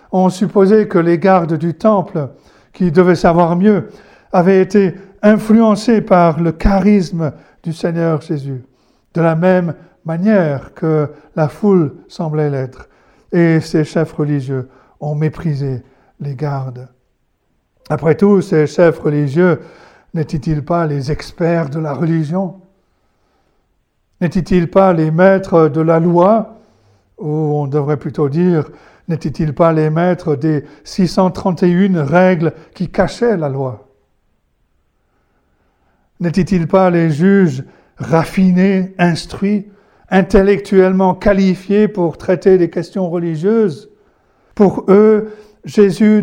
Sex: male